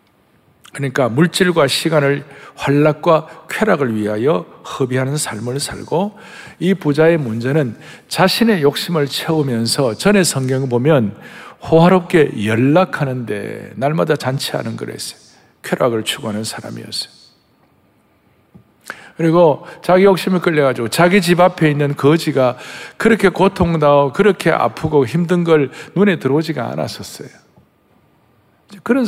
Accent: native